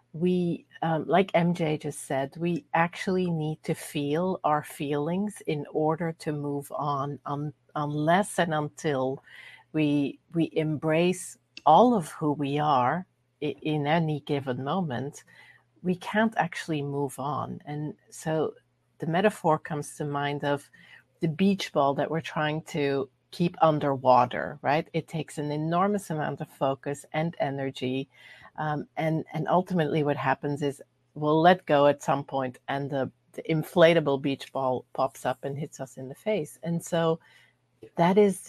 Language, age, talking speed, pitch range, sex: English, 50-69, 155 wpm, 140-170 Hz, female